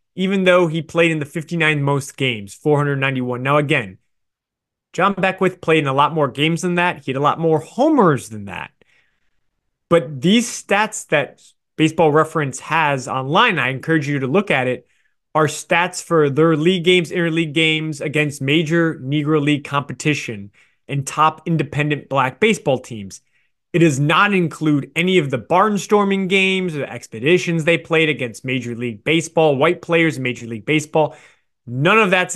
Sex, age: male, 20-39